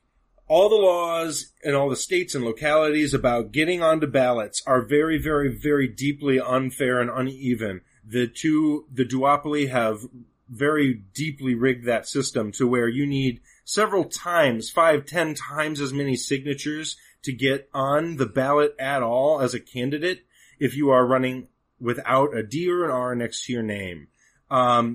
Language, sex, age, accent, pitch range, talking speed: English, male, 30-49, American, 125-150 Hz, 165 wpm